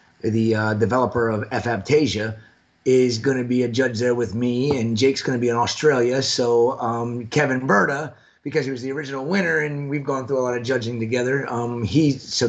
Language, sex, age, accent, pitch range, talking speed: English, male, 30-49, American, 115-145 Hz, 205 wpm